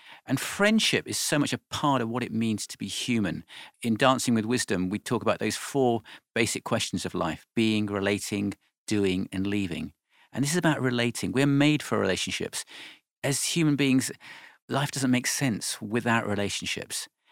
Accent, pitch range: British, 105-130 Hz